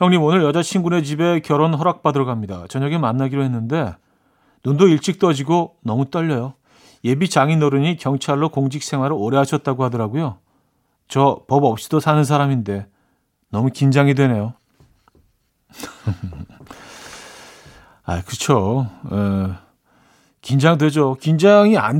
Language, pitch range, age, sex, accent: Korean, 120-155 Hz, 40-59, male, native